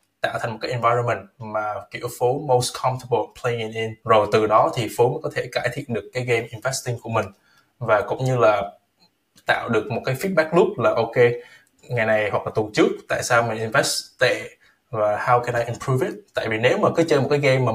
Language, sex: Vietnamese, male